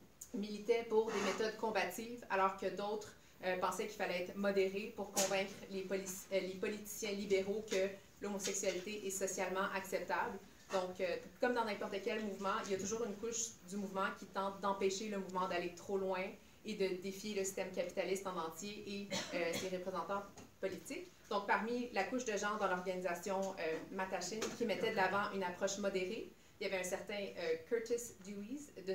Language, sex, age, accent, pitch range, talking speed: French, female, 30-49, Canadian, 190-220 Hz, 185 wpm